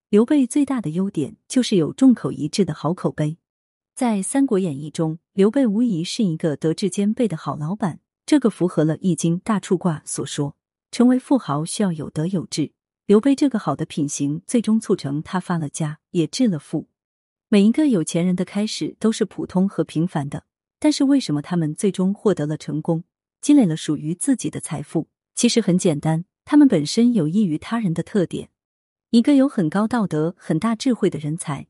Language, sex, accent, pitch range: Chinese, female, native, 160-230 Hz